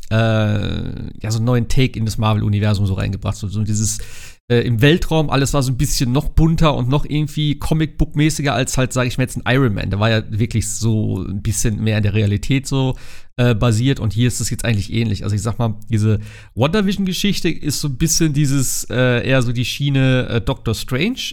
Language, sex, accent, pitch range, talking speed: German, male, German, 110-140 Hz, 215 wpm